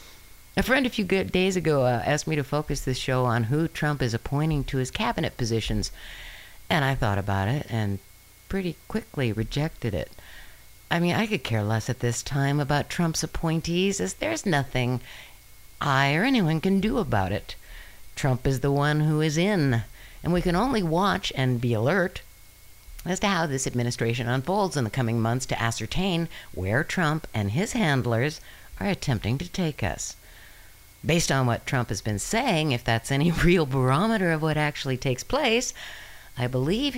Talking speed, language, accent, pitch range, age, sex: 180 wpm, English, American, 120-170 Hz, 60-79, female